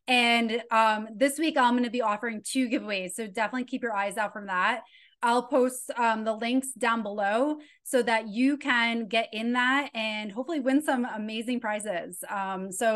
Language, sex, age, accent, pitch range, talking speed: English, female, 20-39, American, 210-255 Hz, 190 wpm